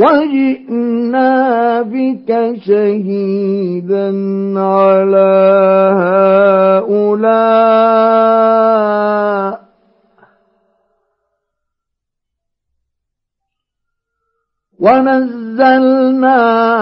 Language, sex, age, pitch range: Arabic, male, 50-69, 195-275 Hz